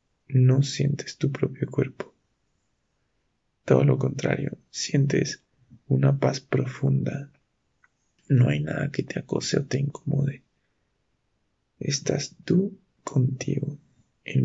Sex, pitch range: male, 130-145 Hz